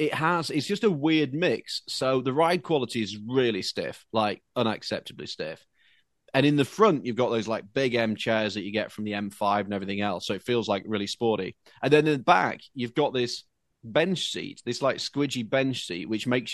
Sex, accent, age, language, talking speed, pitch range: male, British, 30-49, English, 220 wpm, 105-135 Hz